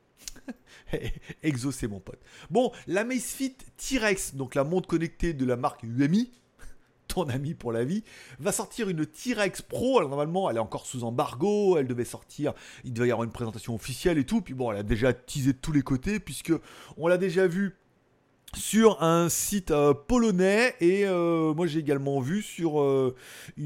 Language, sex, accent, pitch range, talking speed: French, male, French, 130-195 Hz, 185 wpm